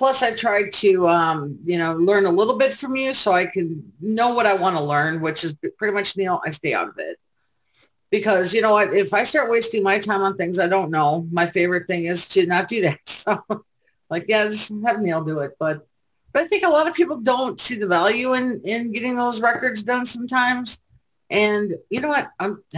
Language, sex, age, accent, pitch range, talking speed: English, female, 40-59, American, 175-245 Hz, 235 wpm